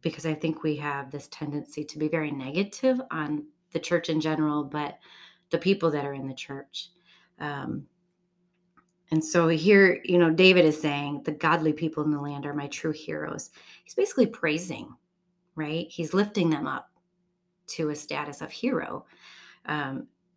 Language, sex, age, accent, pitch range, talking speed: English, female, 30-49, American, 150-180 Hz, 170 wpm